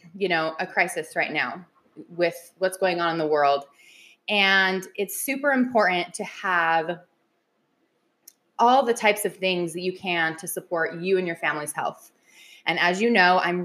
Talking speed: 170 wpm